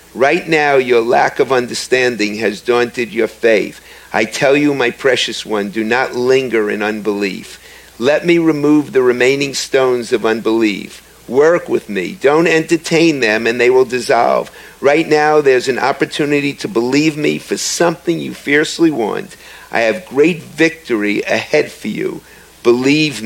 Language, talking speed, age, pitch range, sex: English, 155 wpm, 50-69, 125-170 Hz, male